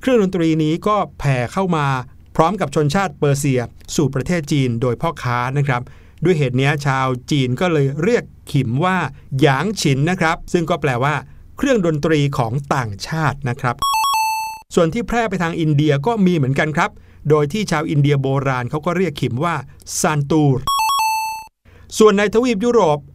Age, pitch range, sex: 60-79, 135-185 Hz, male